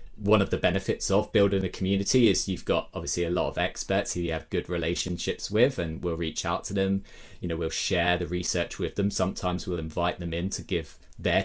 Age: 20-39